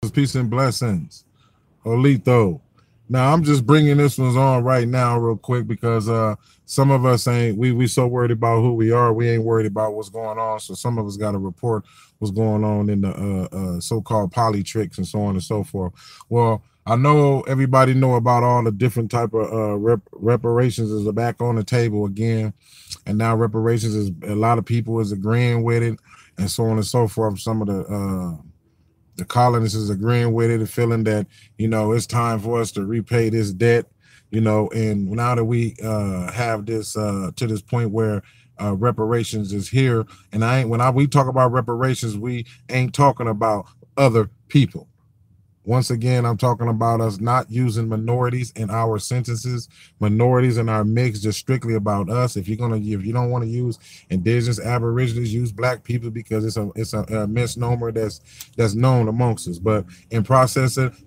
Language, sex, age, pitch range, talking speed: English, male, 20-39, 110-125 Hz, 195 wpm